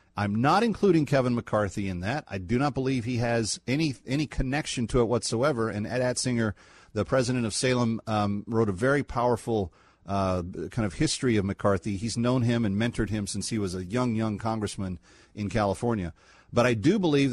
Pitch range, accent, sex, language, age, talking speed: 105-140 Hz, American, male, English, 40-59, 195 wpm